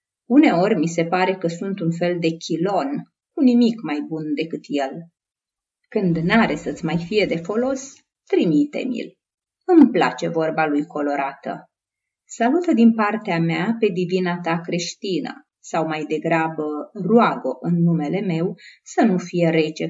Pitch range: 165-240 Hz